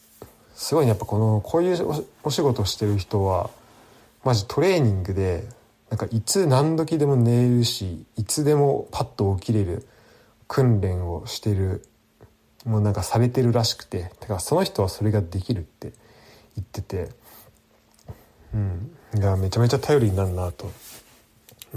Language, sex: Japanese, male